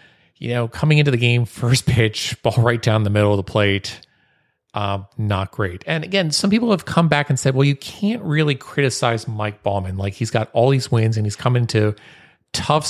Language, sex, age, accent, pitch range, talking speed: English, male, 30-49, American, 105-135 Hz, 220 wpm